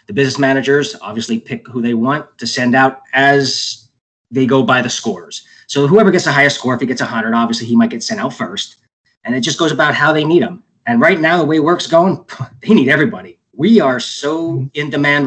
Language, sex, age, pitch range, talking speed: English, male, 20-39, 125-160 Hz, 230 wpm